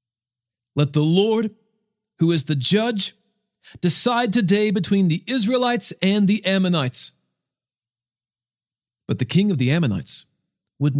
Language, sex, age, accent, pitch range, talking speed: English, male, 40-59, American, 125-185 Hz, 120 wpm